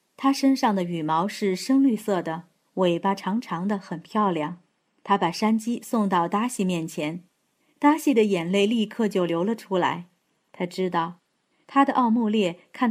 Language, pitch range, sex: Chinese, 180-240 Hz, female